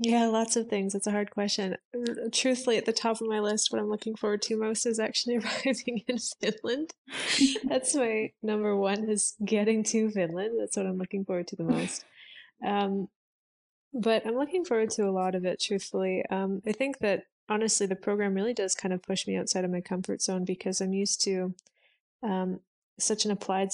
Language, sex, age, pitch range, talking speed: English, female, 20-39, 185-220 Hz, 200 wpm